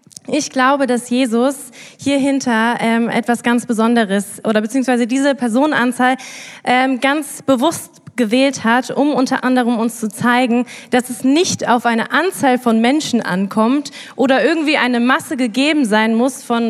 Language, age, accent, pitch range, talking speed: German, 20-39, German, 230-275 Hz, 145 wpm